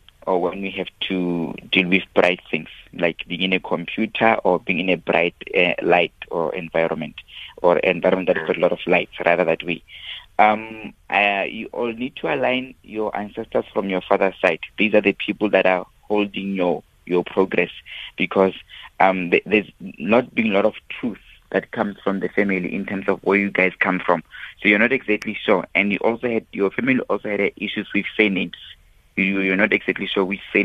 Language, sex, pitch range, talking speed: English, male, 95-105 Hz, 200 wpm